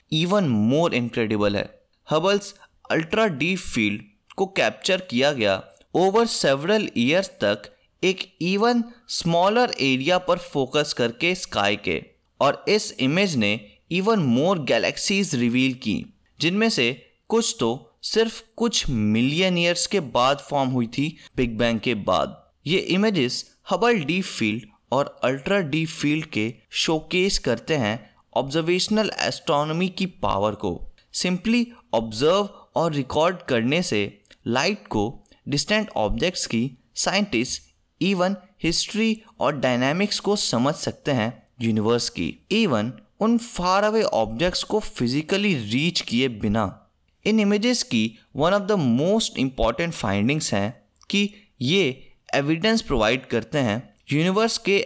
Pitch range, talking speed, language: 120-200 Hz, 90 wpm, Hindi